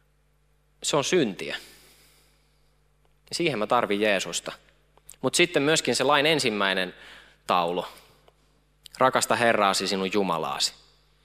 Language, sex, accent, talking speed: Finnish, male, native, 95 wpm